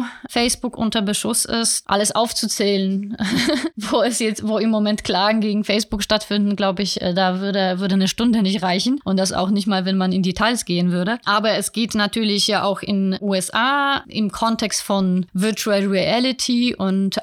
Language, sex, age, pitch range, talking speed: German, female, 20-39, 190-220 Hz, 165 wpm